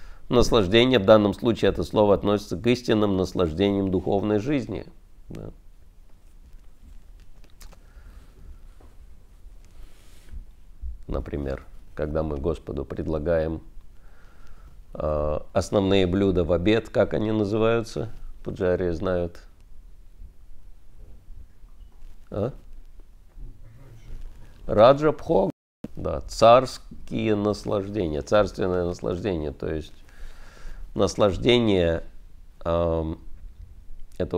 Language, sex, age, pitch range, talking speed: Russian, male, 50-69, 80-100 Hz, 70 wpm